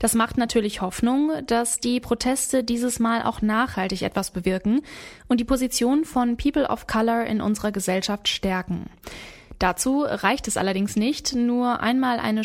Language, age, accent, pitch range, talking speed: German, 20-39, German, 210-250 Hz, 155 wpm